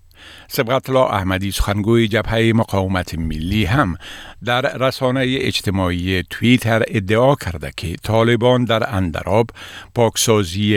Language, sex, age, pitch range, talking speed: Persian, male, 50-69, 95-120 Hz, 100 wpm